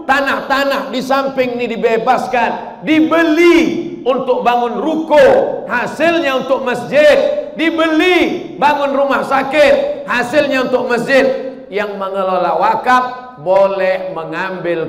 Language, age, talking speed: Indonesian, 50-69, 95 wpm